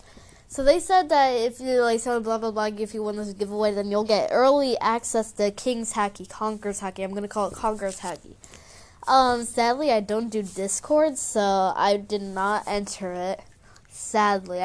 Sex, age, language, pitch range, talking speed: female, 10-29, English, 190-235 Hz, 185 wpm